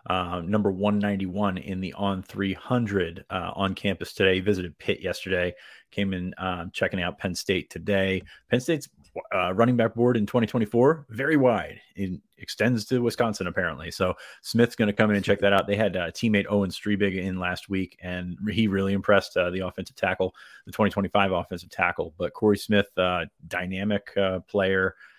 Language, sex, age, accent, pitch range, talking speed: English, male, 30-49, American, 95-110 Hz, 180 wpm